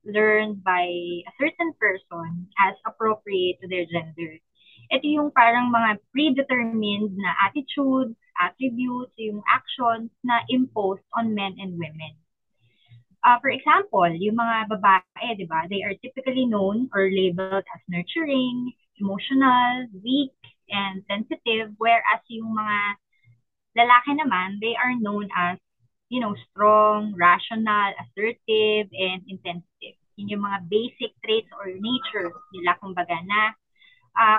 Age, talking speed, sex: 20-39, 125 wpm, female